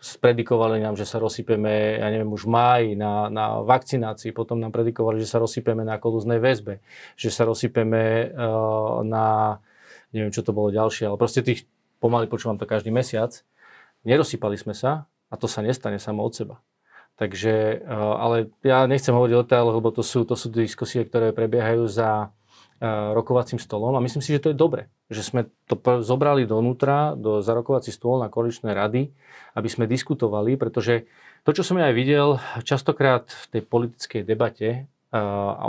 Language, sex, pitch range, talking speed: Slovak, male, 110-130 Hz, 170 wpm